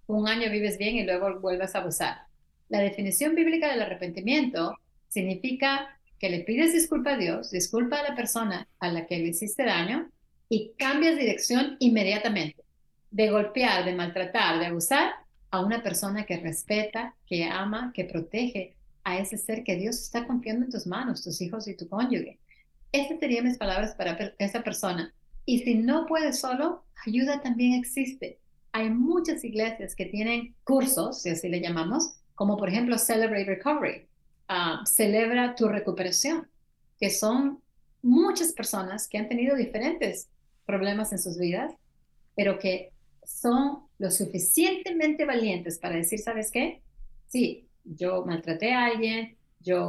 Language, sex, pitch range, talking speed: Spanish, female, 185-250 Hz, 155 wpm